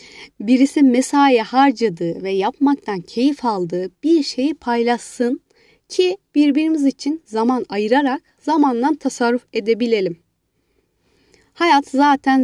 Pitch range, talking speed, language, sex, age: 225-280 Hz, 95 wpm, Turkish, female, 30-49